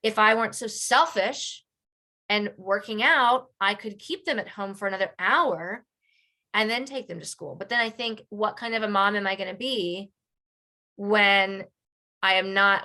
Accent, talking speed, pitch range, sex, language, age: American, 185 wpm, 190-240 Hz, female, English, 20-39